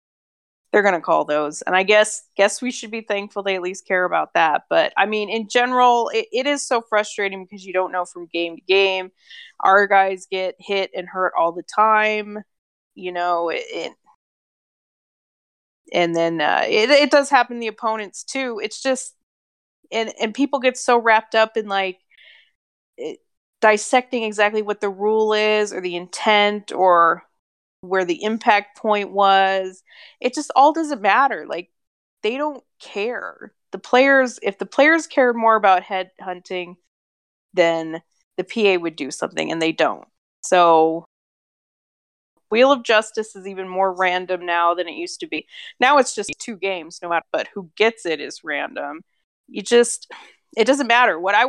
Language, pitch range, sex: English, 185-240 Hz, female